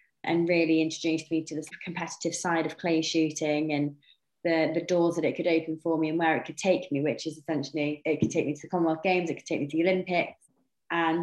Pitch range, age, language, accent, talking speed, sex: 150-165 Hz, 20-39, English, British, 245 wpm, female